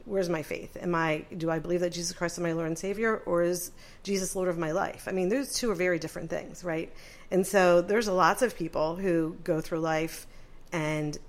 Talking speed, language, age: 230 wpm, English, 40-59